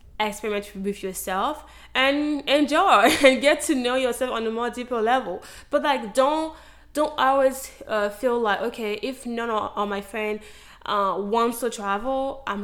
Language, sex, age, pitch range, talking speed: English, female, 20-39, 200-245 Hz, 160 wpm